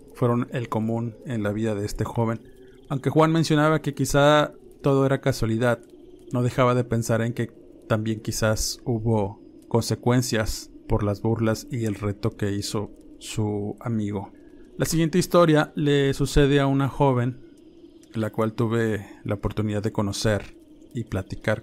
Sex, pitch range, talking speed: male, 110-135 Hz, 150 wpm